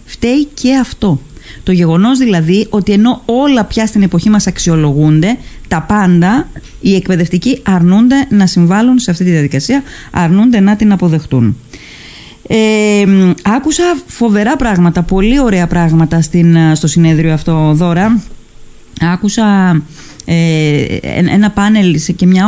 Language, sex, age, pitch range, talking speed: Greek, female, 20-39, 170-210 Hz, 115 wpm